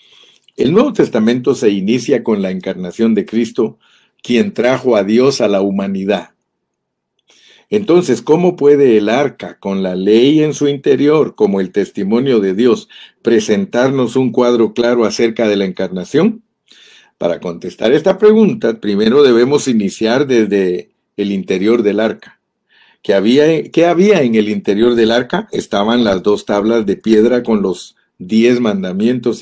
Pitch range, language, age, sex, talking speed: 110-165 Hz, Spanish, 50-69, male, 145 wpm